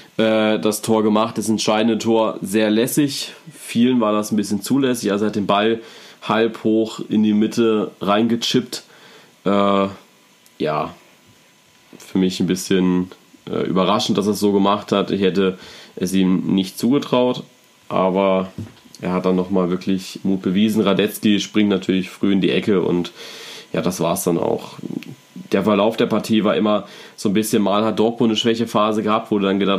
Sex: male